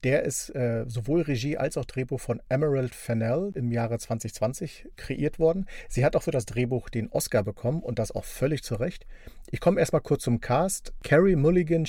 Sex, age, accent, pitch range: male, 40-59, German, 120-150 Hz